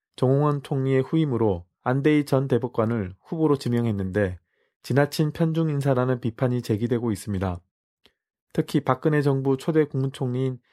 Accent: native